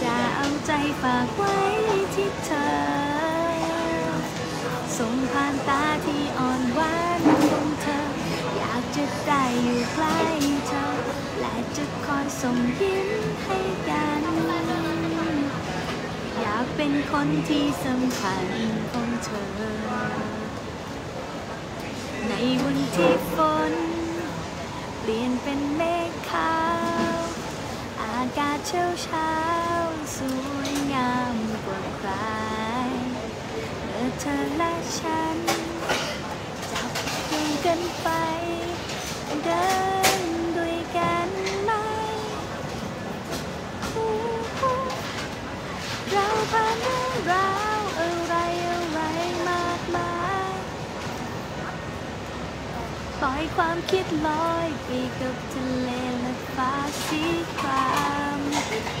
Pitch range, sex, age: 250-340 Hz, female, 20-39